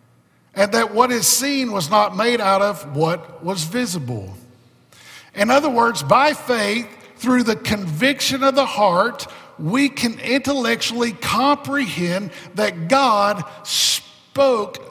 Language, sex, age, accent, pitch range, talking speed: English, male, 50-69, American, 175-240 Hz, 125 wpm